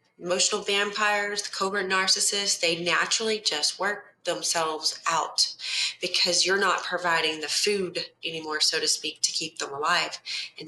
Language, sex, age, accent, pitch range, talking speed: English, female, 30-49, American, 165-200 Hz, 145 wpm